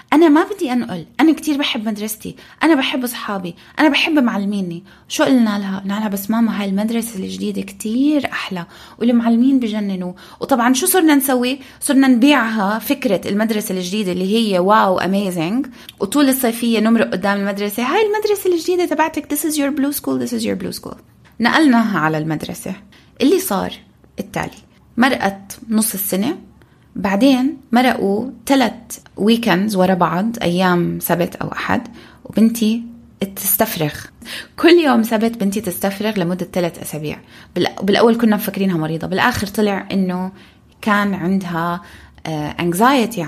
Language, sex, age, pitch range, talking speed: Arabic, female, 20-39, 185-250 Hz, 135 wpm